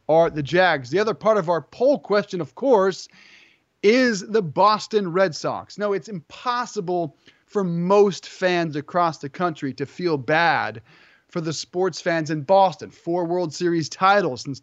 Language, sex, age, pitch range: English, male, 30-49, 155-200 Hz